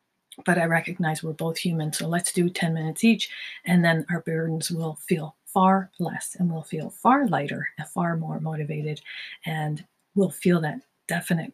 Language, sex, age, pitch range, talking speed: English, female, 40-59, 155-185 Hz, 175 wpm